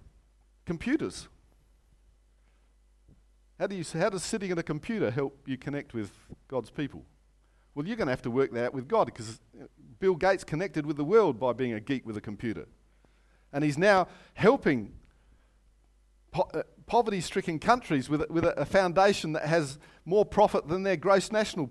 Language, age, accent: English, 50-69, Australian